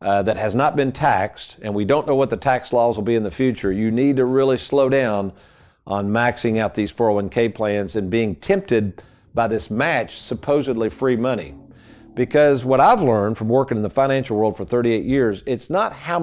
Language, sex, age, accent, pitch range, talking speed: English, male, 50-69, American, 110-140 Hz, 205 wpm